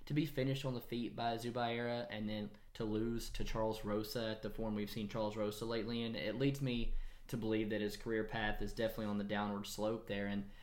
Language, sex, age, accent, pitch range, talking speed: English, male, 20-39, American, 110-125 Hz, 230 wpm